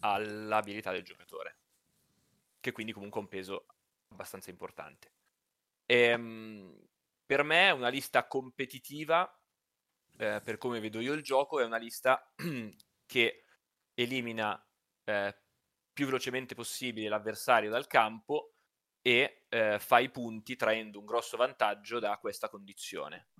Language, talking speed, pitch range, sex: Italian, 125 wpm, 105-125 Hz, male